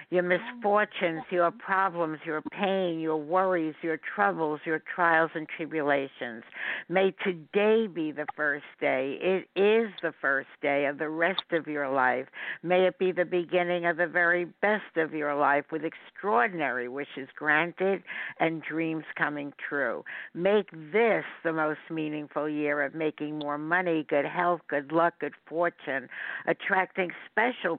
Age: 60-79